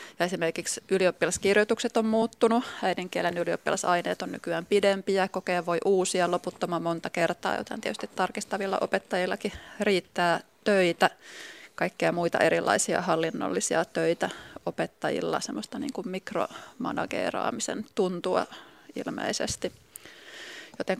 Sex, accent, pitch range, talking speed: female, native, 175-210 Hz, 95 wpm